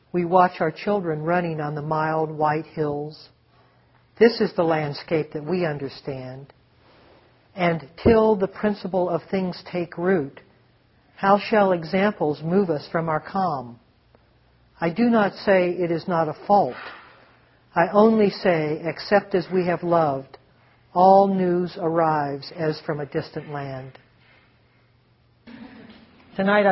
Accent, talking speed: American, 130 wpm